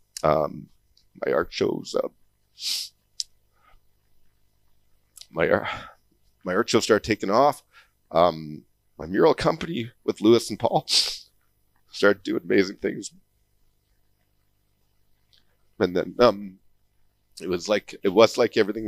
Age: 40-59